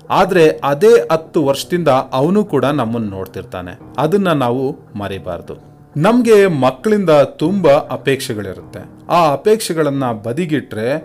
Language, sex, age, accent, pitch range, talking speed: Kannada, male, 30-49, native, 120-165 Hz, 100 wpm